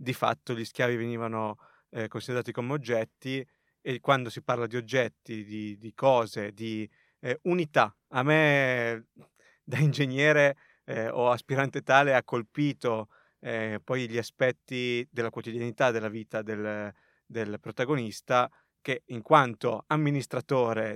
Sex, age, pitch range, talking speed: male, 30-49, 115-135 Hz, 130 wpm